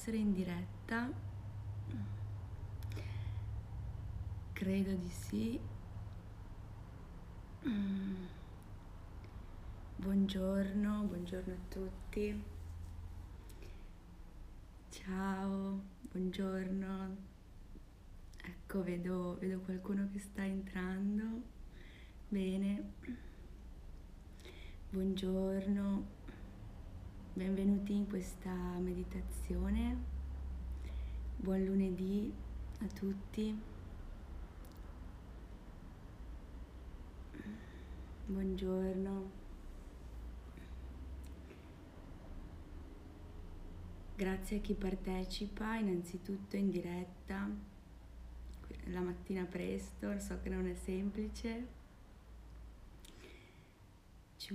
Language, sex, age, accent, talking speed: Italian, female, 20-39, native, 50 wpm